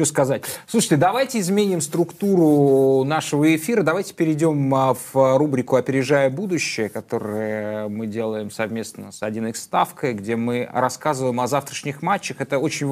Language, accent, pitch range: Russian, native, 115-155 Hz